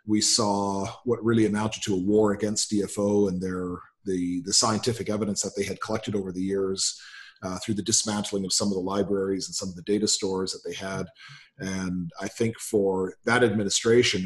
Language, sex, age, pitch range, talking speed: English, male, 40-59, 95-110 Hz, 200 wpm